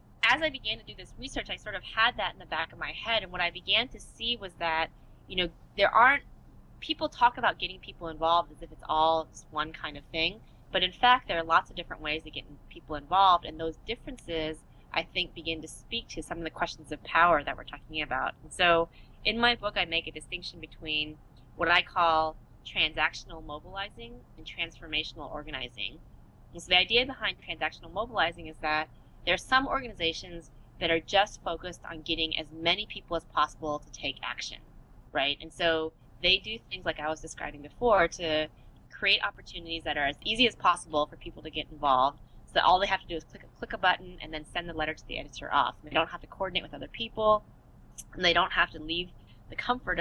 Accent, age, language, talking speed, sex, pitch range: American, 20-39, English, 220 wpm, female, 155-185 Hz